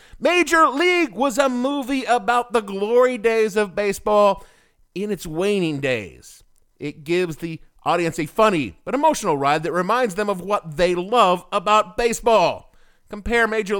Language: English